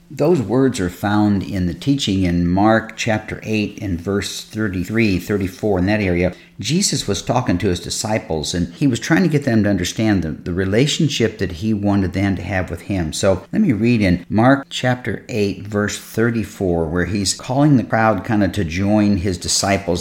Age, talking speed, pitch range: 50-69, 195 wpm, 95-120 Hz